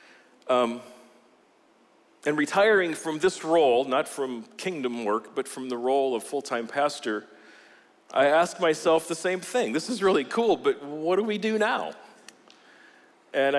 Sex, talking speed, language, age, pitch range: male, 150 wpm, English, 40-59, 120-175 Hz